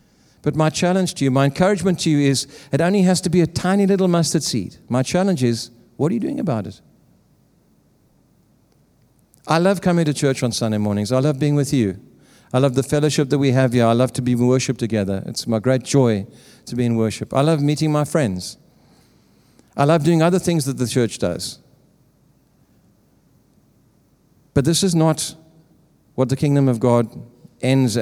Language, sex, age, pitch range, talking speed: English, male, 50-69, 120-150 Hz, 190 wpm